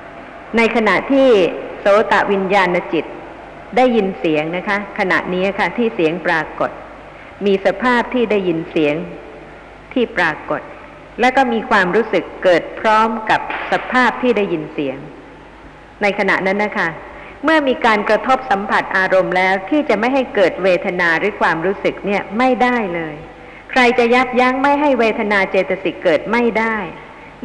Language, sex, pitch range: Thai, female, 180-230 Hz